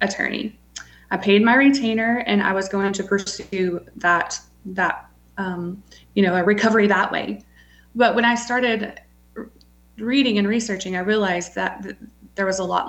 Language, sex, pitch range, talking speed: English, female, 175-200 Hz, 160 wpm